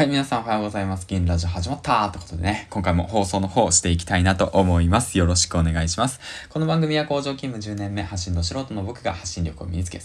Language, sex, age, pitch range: Japanese, male, 20-39, 85-100 Hz